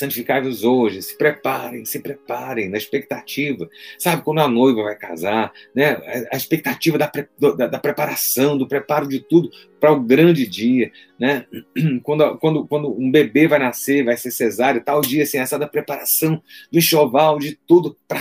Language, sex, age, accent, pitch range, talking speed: Portuguese, male, 40-59, Brazilian, 120-150 Hz, 170 wpm